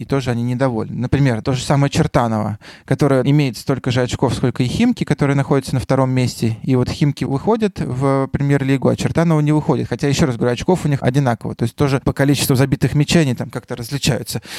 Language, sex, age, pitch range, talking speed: Russian, male, 20-39, 120-145 Hz, 205 wpm